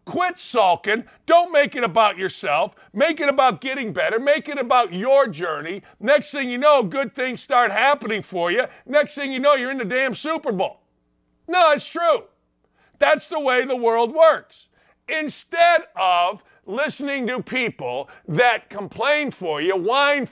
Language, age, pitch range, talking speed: English, 50-69, 200-285 Hz, 165 wpm